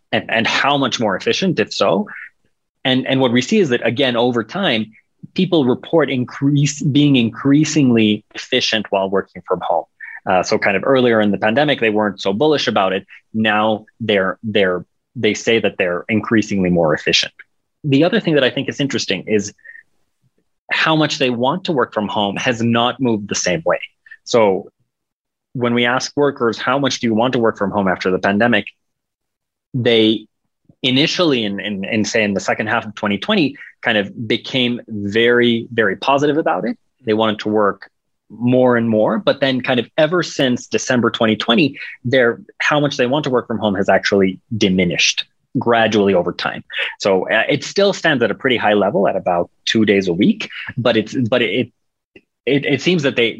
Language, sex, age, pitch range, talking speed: English, male, 30-49, 110-140 Hz, 185 wpm